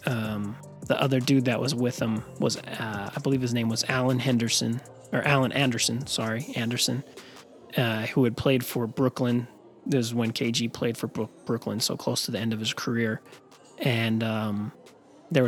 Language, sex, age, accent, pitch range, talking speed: English, male, 30-49, American, 110-130 Hz, 180 wpm